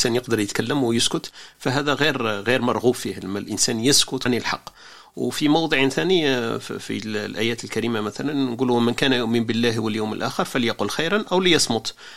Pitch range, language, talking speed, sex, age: 115-135 Hz, Arabic, 160 wpm, male, 40-59